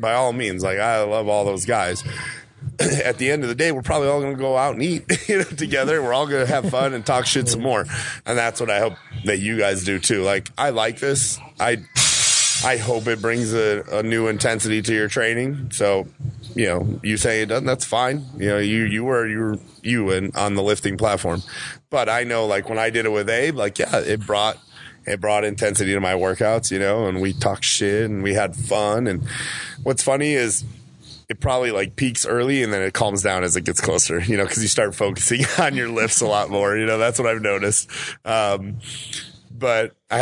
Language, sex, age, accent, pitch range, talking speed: English, male, 30-49, American, 105-130 Hz, 235 wpm